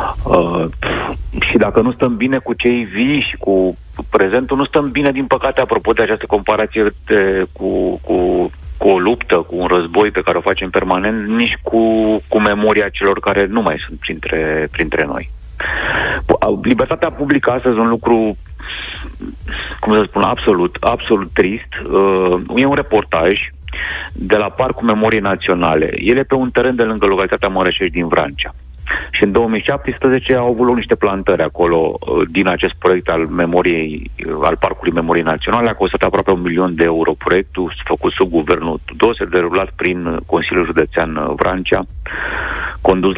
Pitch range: 85-120 Hz